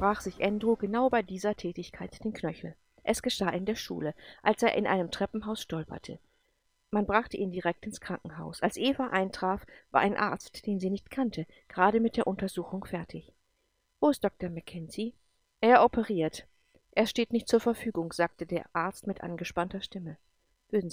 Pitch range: 175-220 Hz